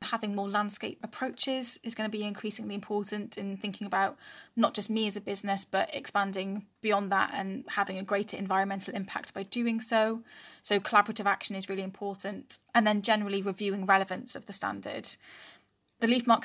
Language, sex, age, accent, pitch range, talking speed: English, female, 10-29, British, 195-215 Hz, 175 wpm